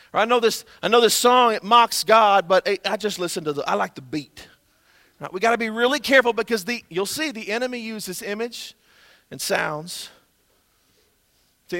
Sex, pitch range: male, 195-235 Hz